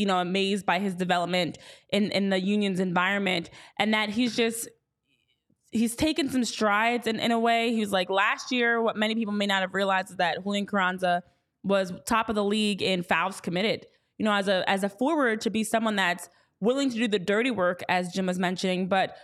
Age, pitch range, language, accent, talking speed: 20-39, 195-245 Hz, English, American, 210 wpm